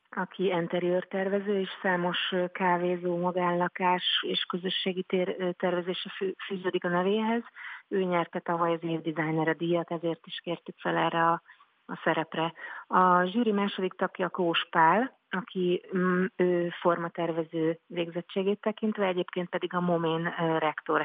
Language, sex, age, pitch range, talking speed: Hungarian, female, 30-49, 170-185 Hz, 125 wpm